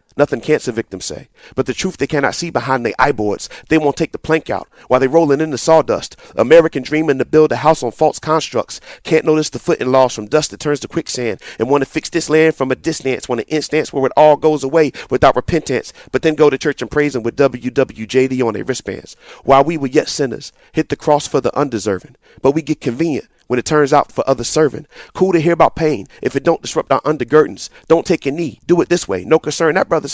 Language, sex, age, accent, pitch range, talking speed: English, male, 40-59, American, 135-165 Hz, 245 wpm